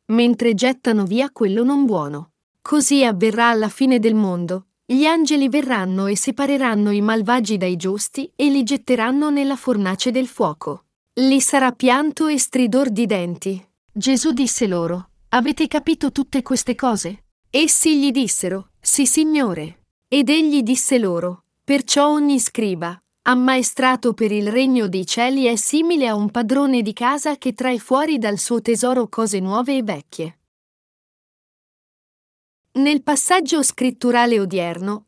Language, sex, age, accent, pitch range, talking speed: Italian, female, 40-59, native, 210-275 Hz, 140 wpm